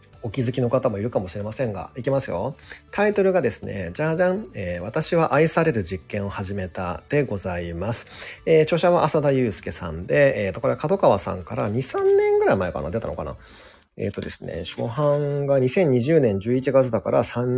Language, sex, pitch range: Japanese, male, 100-145 Hz